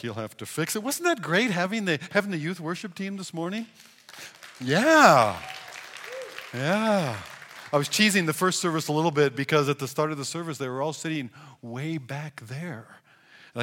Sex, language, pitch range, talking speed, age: male, English, 135-195 Hz, 190 wpm, 40-59